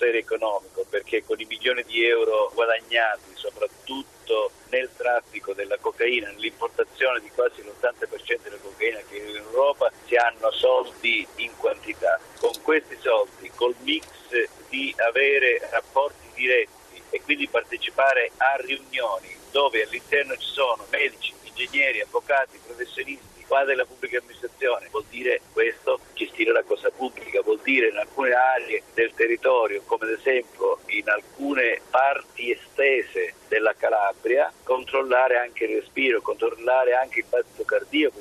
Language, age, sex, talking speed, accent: Italian, 50-69, male, 130 wpm, native